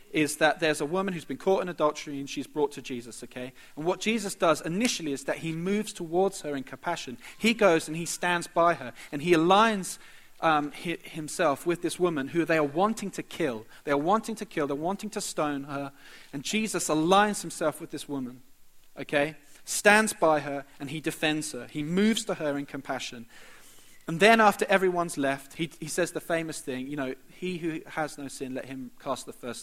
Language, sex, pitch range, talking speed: English, male, 130-170 Hz, 210 wpm